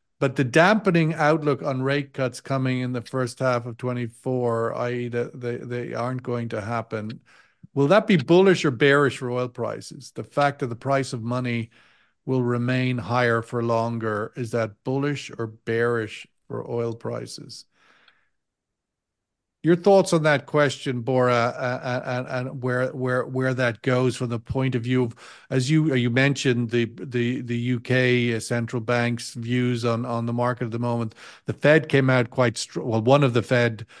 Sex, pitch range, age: male, 120-130 Hz, 50-69